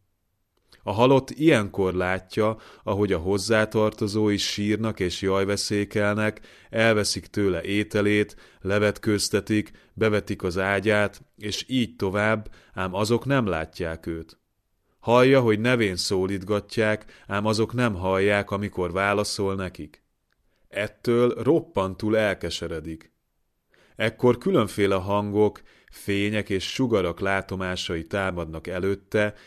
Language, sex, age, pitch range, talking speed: Hungarian, male, 30-49, 95-105 Hz, 100 wpm